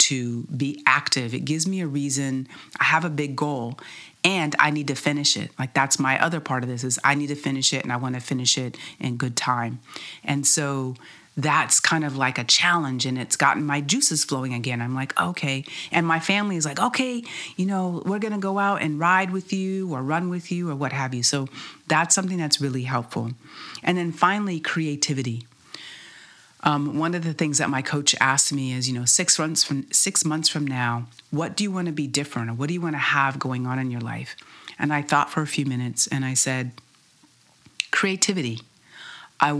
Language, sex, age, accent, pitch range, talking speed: English, female, 40-59, American, 130-160 Hz, 220 wpm